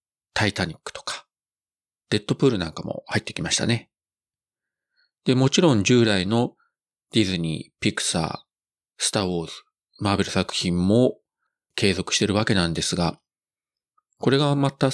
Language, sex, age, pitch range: Japanese, male, 40-59, 95-125 Hz